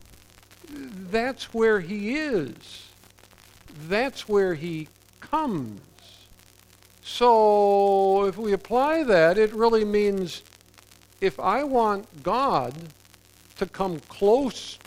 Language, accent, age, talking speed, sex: English, American, 50-69, 95 wpm, male